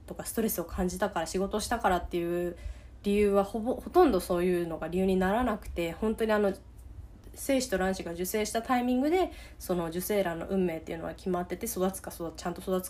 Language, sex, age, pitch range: Japanese, female, 20-39, 175-215 Hz